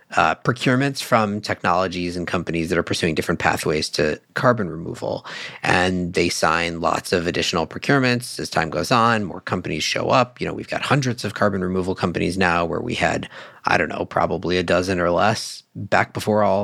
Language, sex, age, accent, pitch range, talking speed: English, male, 40-59, American, 90-130 Hz, 190 wpm